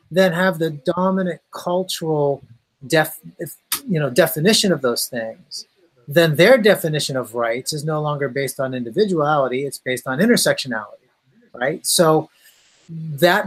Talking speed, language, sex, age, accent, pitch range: 135 wpm, English, male, 30-49, American, 140-180 Hz